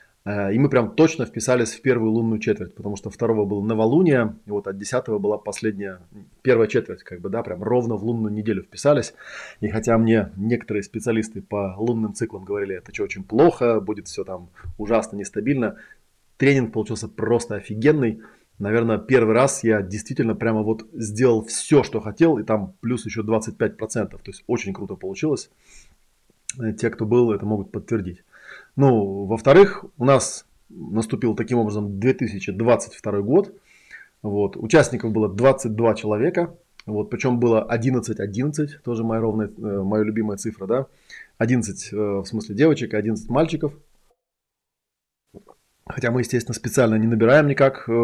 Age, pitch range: 20-39, 105-120 Hz